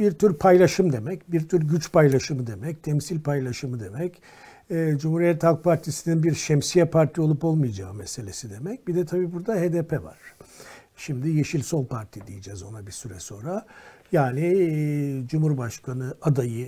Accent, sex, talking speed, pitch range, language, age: native, male, 145 wpm, 135-165 Hz, Turkish, 60-79